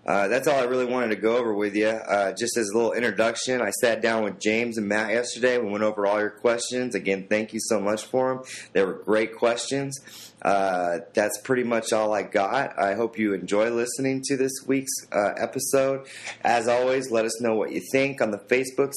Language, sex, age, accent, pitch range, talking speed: English, male, 30-49, American, 100-120 Hz, 220 wpm